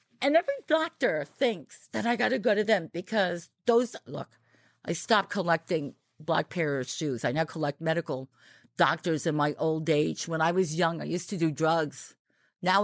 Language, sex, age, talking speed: English, female, 50-69, 185 wpm